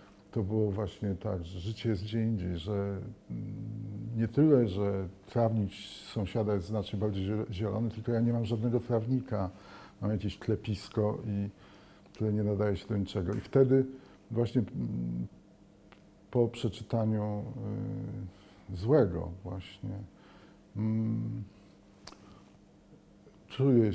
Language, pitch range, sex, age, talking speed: Polish, 100-110 Hz, male, 50-69, 110 wpm